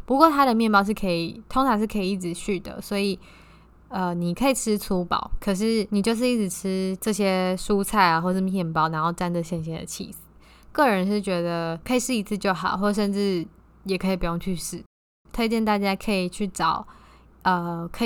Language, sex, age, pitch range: Chinese, female, 10-29, 180-210 Hz